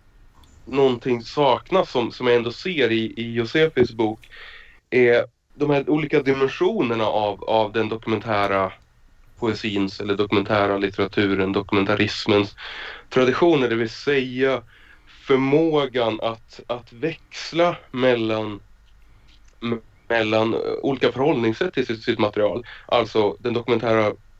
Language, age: Swedish, 30-49